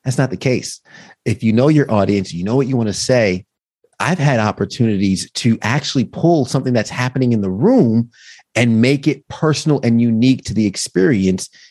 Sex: male